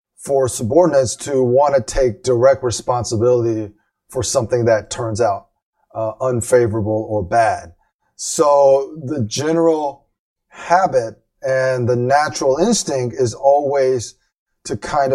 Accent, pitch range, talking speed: American, 115-150 Hz, 115 wpm